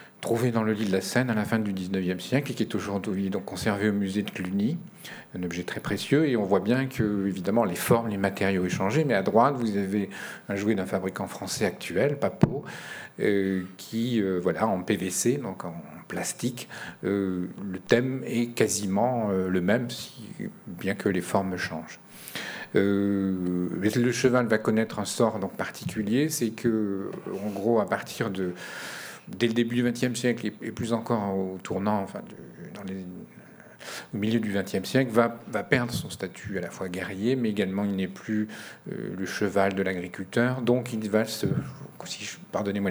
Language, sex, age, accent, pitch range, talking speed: French, male, 50-69, French, 95-115 Hz, 175 wpm